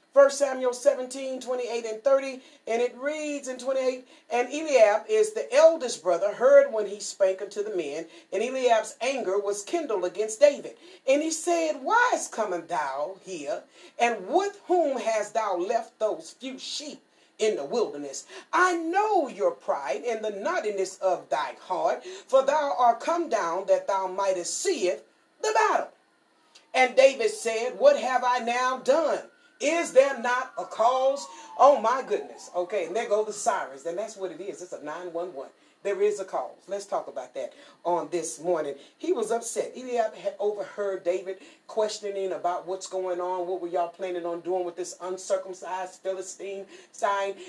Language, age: English, 40-59